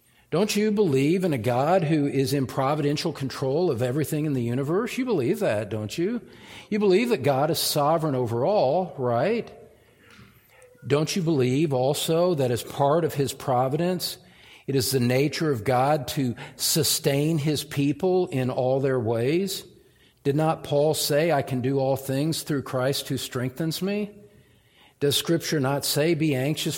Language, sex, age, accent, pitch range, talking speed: English, male, 50-69, American, 130-160 Hz, 165 wpm